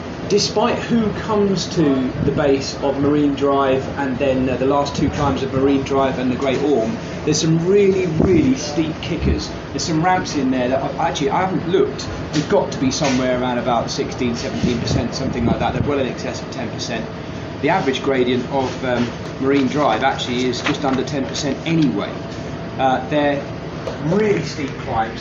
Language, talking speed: English, 180 wpm